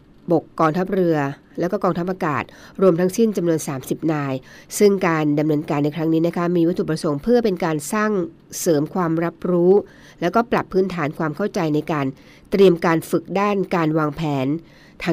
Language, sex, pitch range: Thai, female, 155-190 Hz